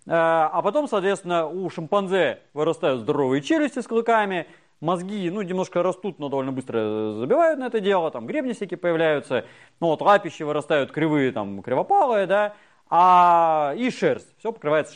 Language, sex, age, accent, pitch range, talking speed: Russian, male, 30-49, native, 155-230 Hz, 150 wpm